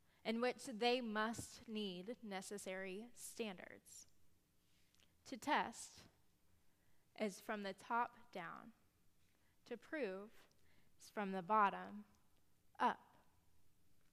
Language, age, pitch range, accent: English, 20-39, 210-250 Hz, American